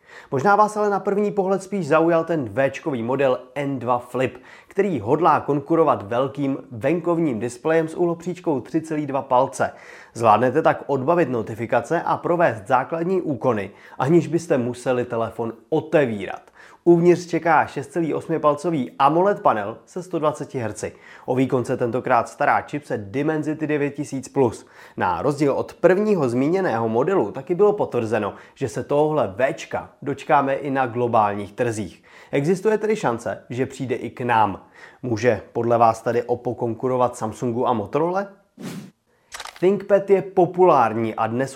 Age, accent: 30-49, native